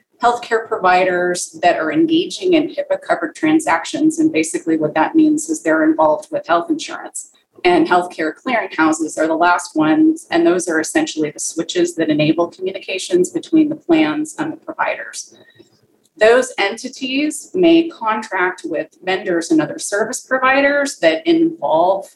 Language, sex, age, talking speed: English, female, 30-49, 145 wpm